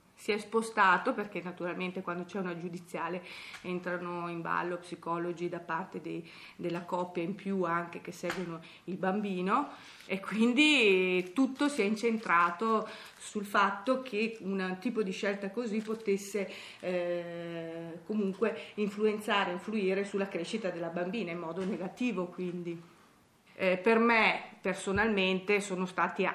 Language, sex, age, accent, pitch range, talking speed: Italian, female, 30-49, native, 175-210 Hz, 135 wpm